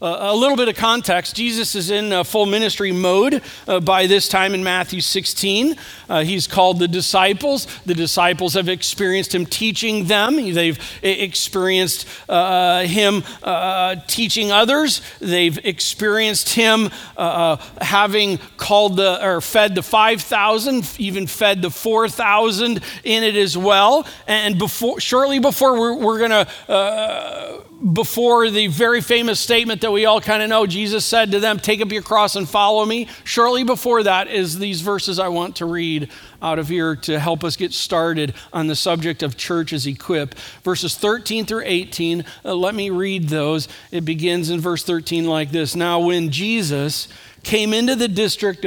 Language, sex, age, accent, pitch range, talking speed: English, male, 50-69, American, 175-220 Hz, 170 wpm